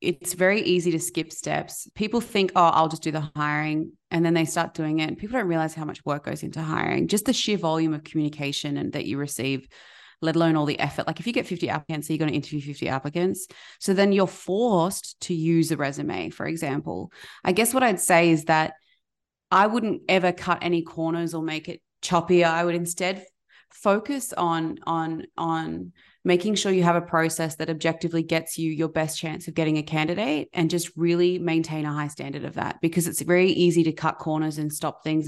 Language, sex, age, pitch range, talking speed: English, female, 20-39, 160-185 Hz, 215 wpm